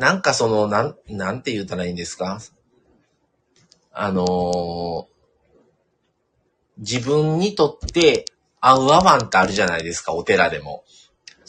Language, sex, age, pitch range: Japanese, male, 40-59, 95-140 Hz